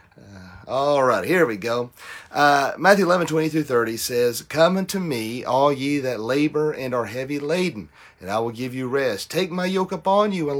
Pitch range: 110-145 Hz